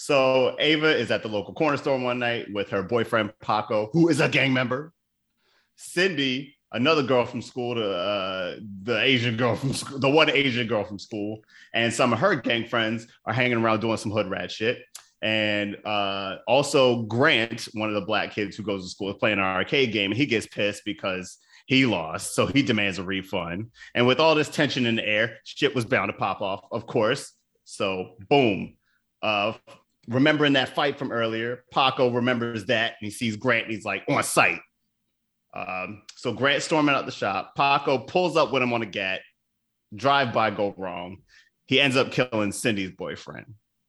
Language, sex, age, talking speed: English, male, 30-49, 195 wpm